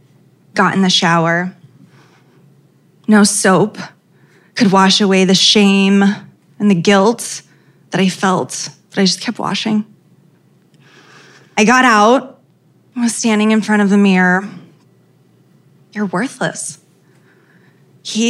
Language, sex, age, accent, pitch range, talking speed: English, female, 20-39, American, 175-210 Hz, 120 wpm